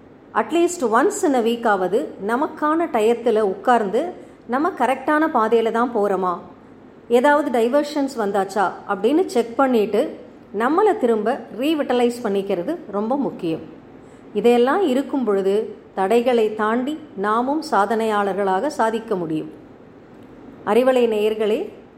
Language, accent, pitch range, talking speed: Tamil, native, 215-275 Hz, 100 wpm